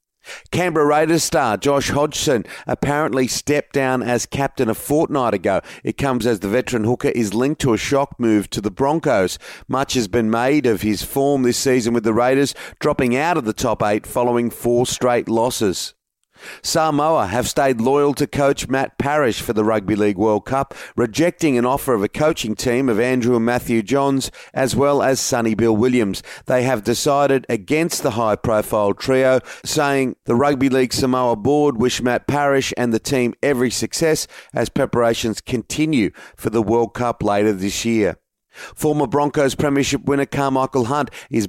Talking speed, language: 175 wpm, English